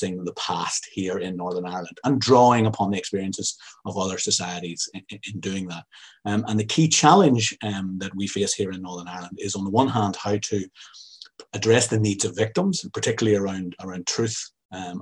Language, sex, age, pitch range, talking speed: English, male, 30-49, 90-110 Hz, 190 wpm